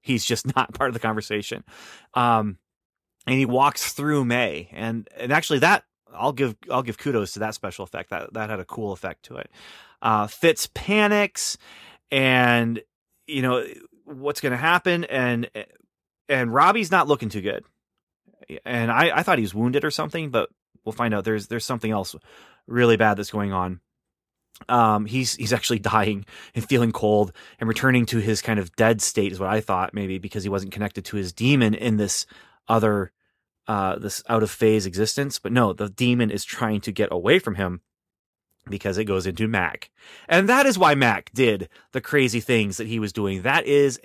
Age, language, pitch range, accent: 30-49, English, 105-140 Hz, American